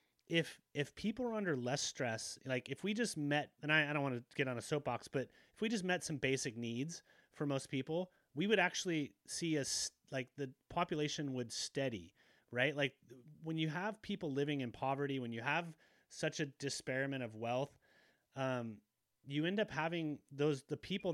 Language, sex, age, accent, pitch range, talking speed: English, male, 30-49, American, 130-160 Hz, 195 wpm